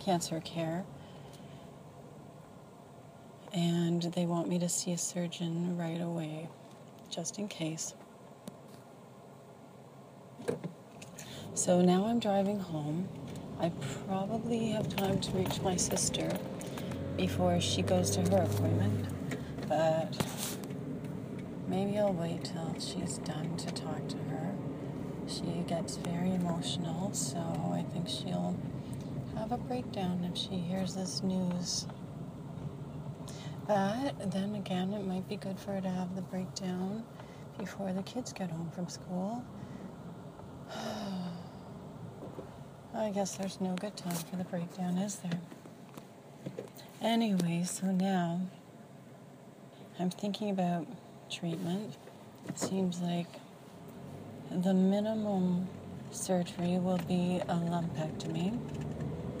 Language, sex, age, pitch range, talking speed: English, female, 40-59, 150-190 Hz, 110 wpm